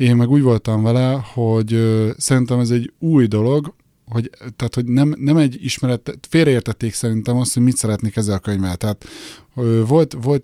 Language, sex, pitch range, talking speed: Hungarian, male, 110-130 Hz, 185 wpm